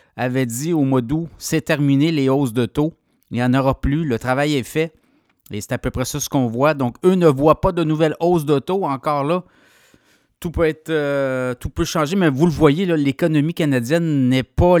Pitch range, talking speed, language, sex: 130-160 Hz, 215 wpm, French, male